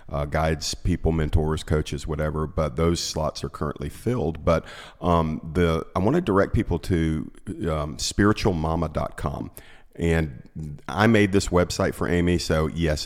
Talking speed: 145 wpm